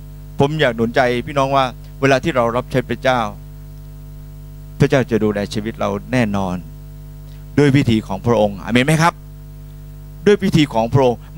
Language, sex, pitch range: Thai, male, 140-165 Hz